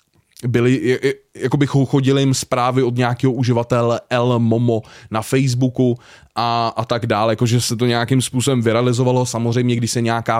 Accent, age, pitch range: native, 20-39, 115-130 Hz